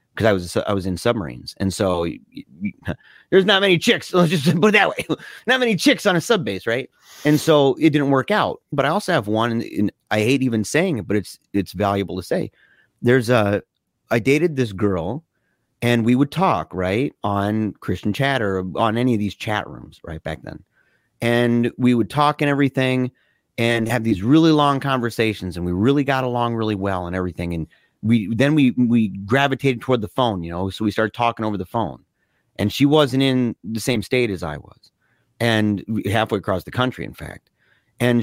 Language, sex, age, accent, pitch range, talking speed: English, male, 30-49, American, 105-140 Hz, 210 wpm